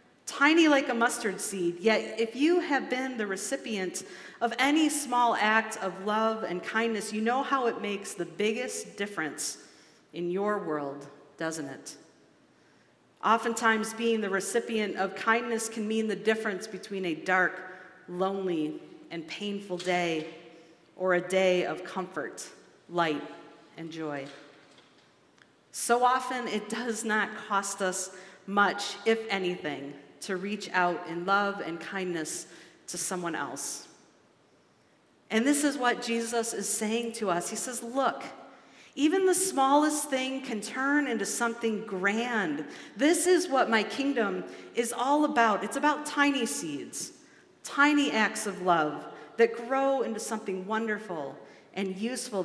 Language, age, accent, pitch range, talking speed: English, 40-59, American, 185-240 Hz, 140 wpm